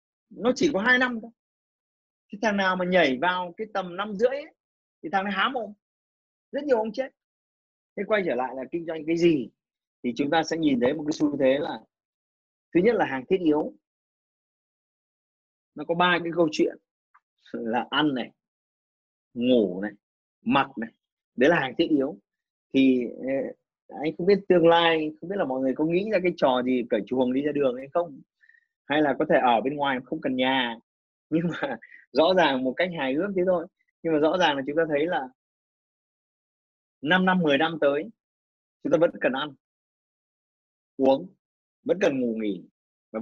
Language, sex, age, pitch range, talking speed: Vietnamese, male, 20-39, 130-190 Hz, 190 wpm